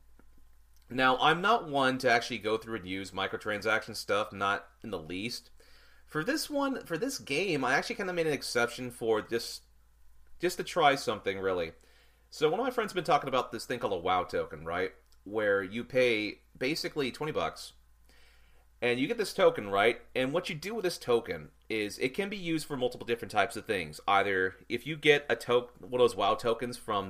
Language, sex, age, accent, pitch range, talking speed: English, male, 30-49, American, 100-165 Hz, 205 wpm